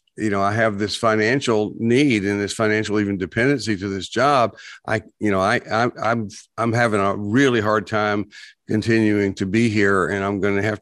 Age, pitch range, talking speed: 60-79, 110-130 Hz, 200 wpm